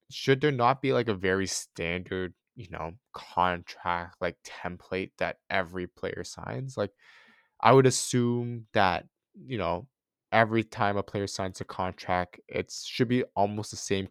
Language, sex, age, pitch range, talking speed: English, male, 20-39, 90-105 Hz, 155 wpm